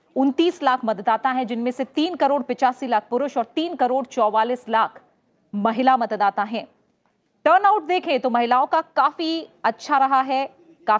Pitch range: 235-290 Hz